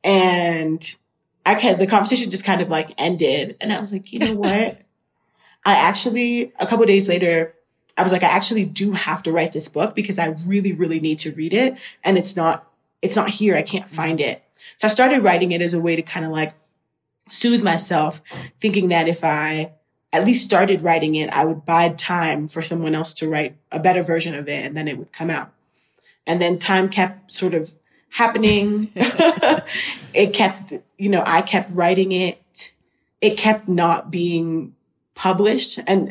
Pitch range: 160-195 Hz